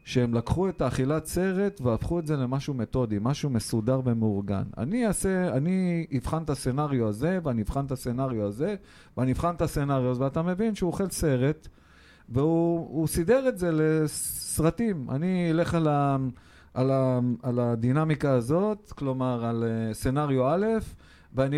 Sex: male